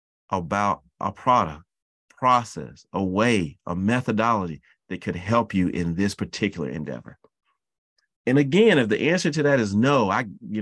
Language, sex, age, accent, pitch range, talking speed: English, male, 30-49, American, 95-140 Hz, 155 wpm